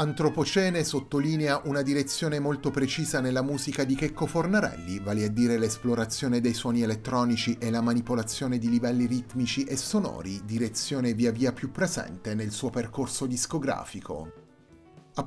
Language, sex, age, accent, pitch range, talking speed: Italian, male, 30-49, native, 120-140 Hz, 140 wpm